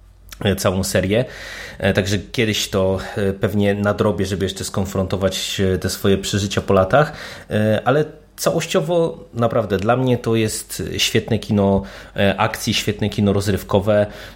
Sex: male